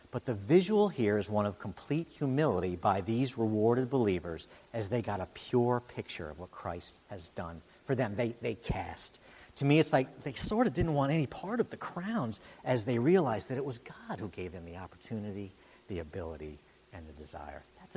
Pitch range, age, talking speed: 100-135 Hz, 50-69, 205 wpm